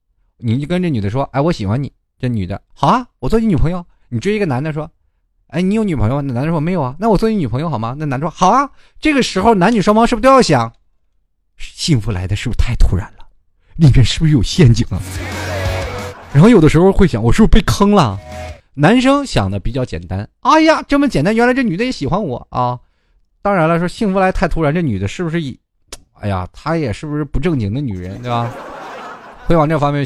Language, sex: Chinese, male